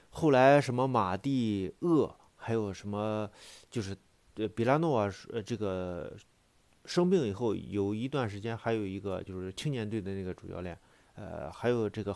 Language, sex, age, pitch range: Chinese, male, 30-49, 95-135 Hz